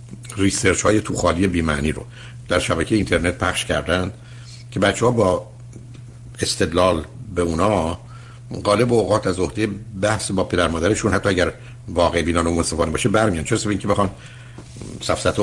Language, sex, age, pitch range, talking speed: Persian, male, 60-79, 90-120 Hz, 150 wpm